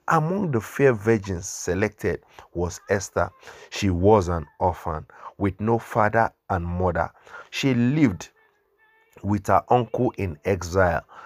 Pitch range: 95-120 Hz